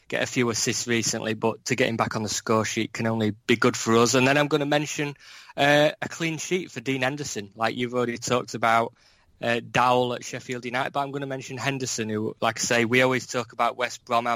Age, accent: 20-39, British